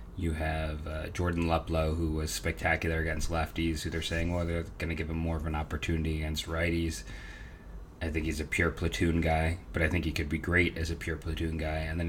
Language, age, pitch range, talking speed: English, 30-49, 80-90 Hz, 230 wpm